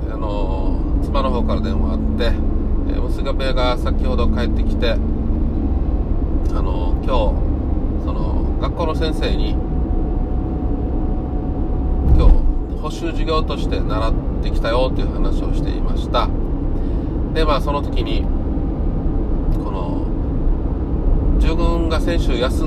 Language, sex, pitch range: Japanese, male, 70-80 Hz